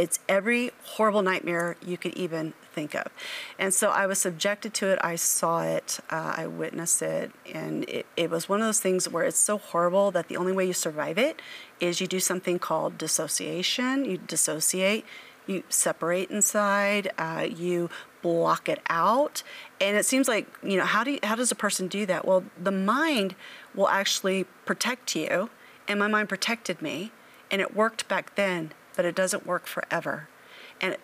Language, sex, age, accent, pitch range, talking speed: English, female, 40-59, American, 175-210 Hz, 185 wpm